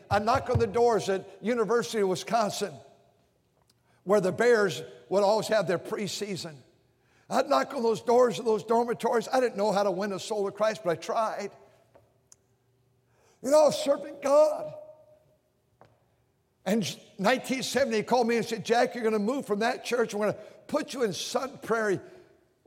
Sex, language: male, English